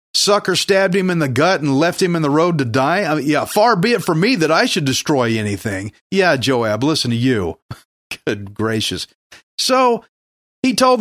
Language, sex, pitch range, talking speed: English, male, 135-185 Hz, 200 wpm